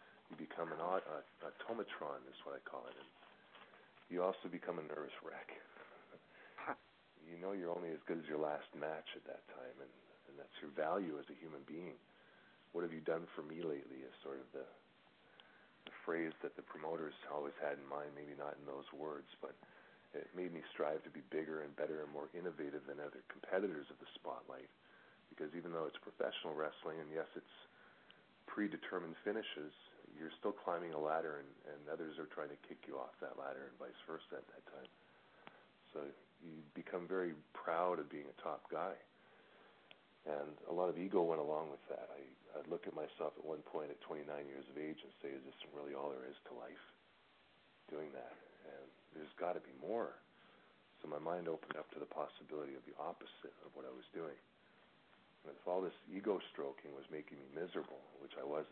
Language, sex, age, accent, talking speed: English, male, 40-59, American, 195 wpm